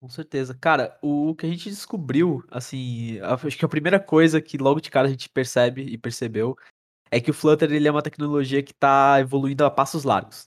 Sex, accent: male, Brazilian